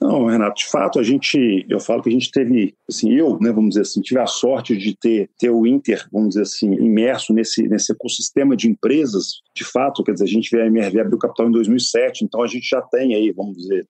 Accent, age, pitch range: Brazilian, 40-59, 115-170 Hz